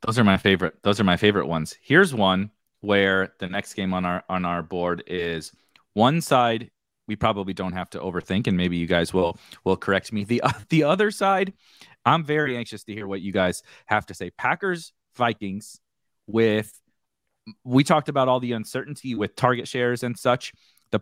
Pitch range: 100-130 Hz